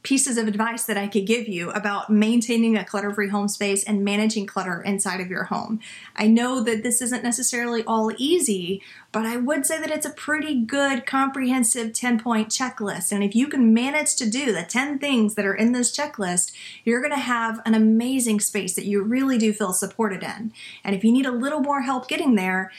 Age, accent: 30-49, American